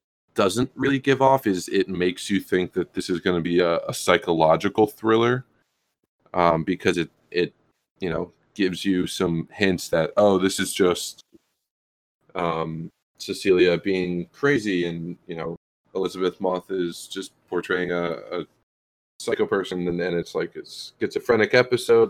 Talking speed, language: 155 wpm, English